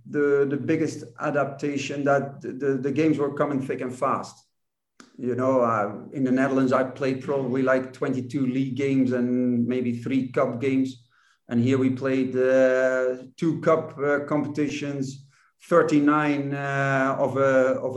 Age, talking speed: 50-69, 155 wpm